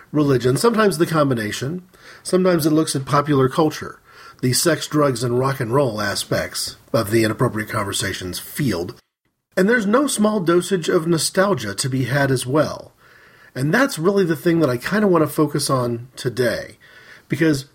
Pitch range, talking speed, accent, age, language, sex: 120-170 Hz, 170 wpm, American, 40-59, English, male